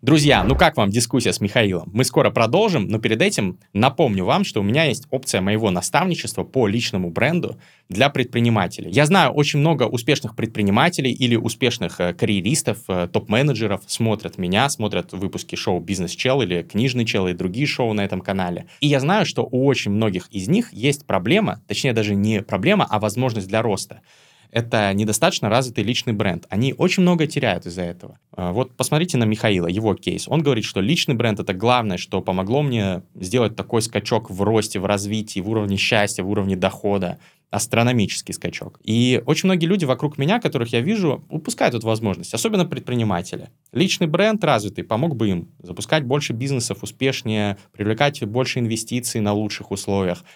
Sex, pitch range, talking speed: male, 100-135 Hz, 170 wpm